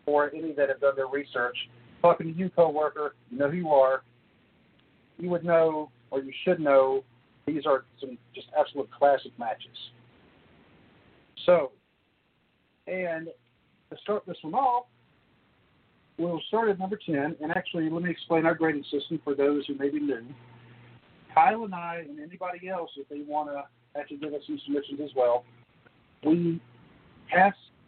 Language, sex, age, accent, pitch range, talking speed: English, male, 50-69, American, 135-165 Hz, 165 wpm